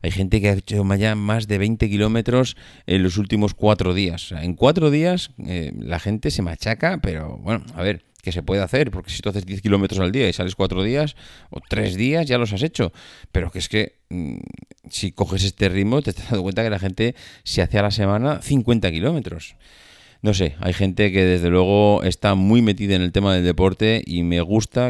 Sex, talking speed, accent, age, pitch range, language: male, 215 wpm, Spanish, 30-49, 90-110 Hz, Spanish